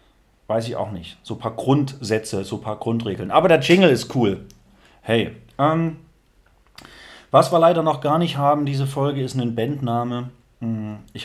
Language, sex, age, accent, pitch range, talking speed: German, male, 30-49, German, 115-140 Hz, 170 wpm